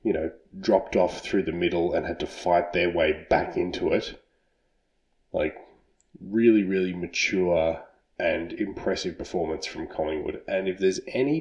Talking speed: 155 wpm